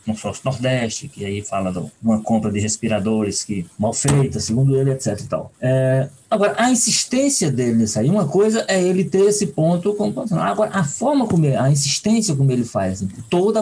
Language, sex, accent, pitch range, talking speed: Portuguese, male, Brazilian, 120-160 Hz, 205 wpm